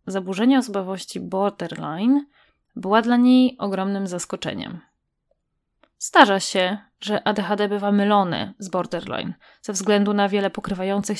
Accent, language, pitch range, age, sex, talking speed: native, Polish, 195-250 Hz, 20-39, female, 115 wpm